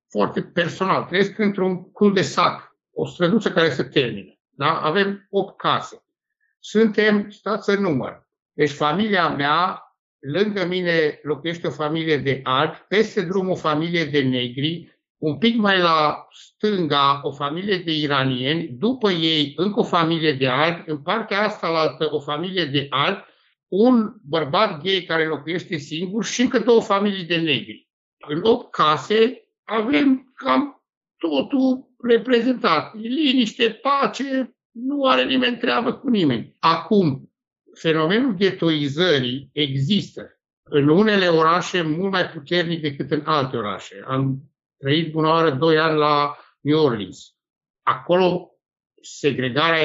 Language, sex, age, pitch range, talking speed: Romanian, male, 60-79, 150-205 Hz, 135 wpm